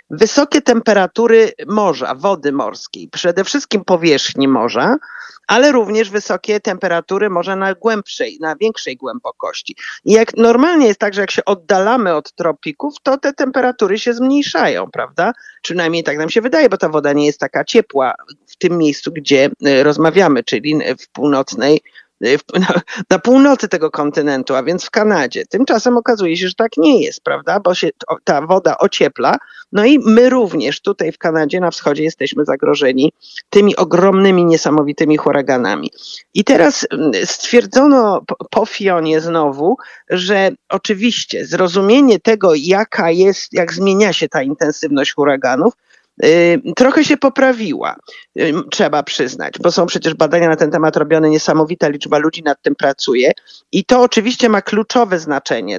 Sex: male